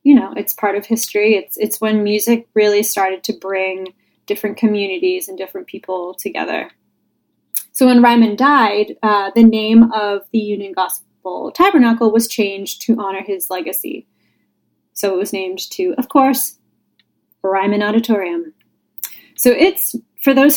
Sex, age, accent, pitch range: female, 10-29, American, 195-245 Hz